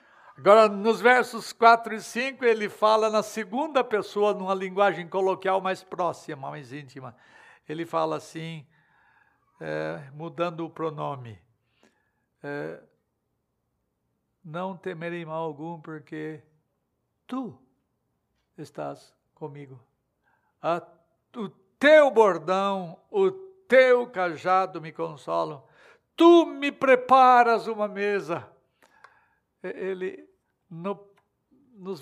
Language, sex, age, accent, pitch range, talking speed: Portuguese, male, 60-79, Brazilian, 165-220 Hz, 95 wpm